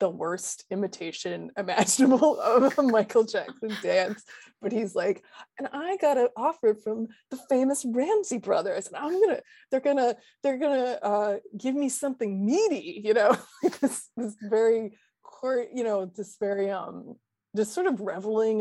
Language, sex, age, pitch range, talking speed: English, female, 20-39, 200-270 Hz, 160 wpm